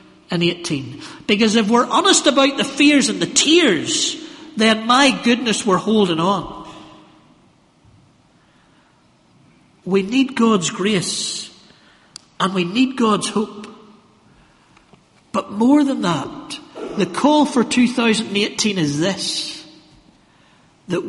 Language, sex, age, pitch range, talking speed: English, male, 60-79, 200-260 Hz, 105 wpm